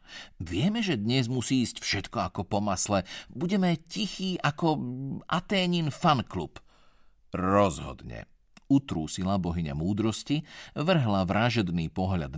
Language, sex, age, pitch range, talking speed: Slovak, male, 50-69, 95-150 Hz, 100 wpm